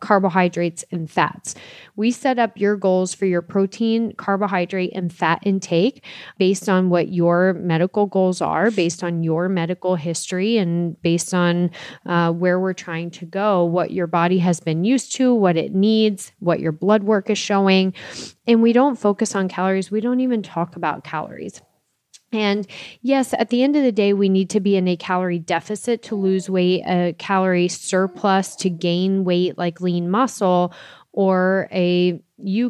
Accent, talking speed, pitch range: American, 175 wpm, 175-205 Hz